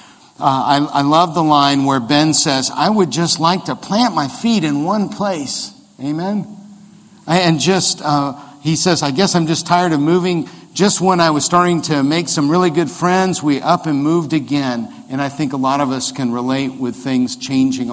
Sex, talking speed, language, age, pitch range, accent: male, 205 wpm, English, 50-69, 135-175 Hz, American